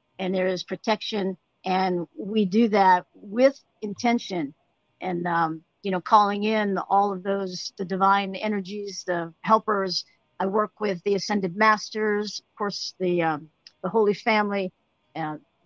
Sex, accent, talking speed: female, American, 145 wpm